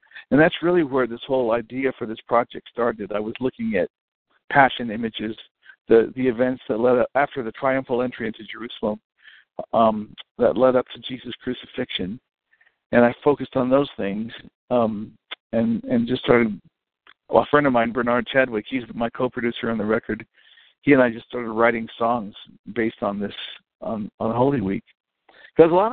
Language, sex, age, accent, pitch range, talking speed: English, male, 60-79, American, 115-130 Hz, 175 wpm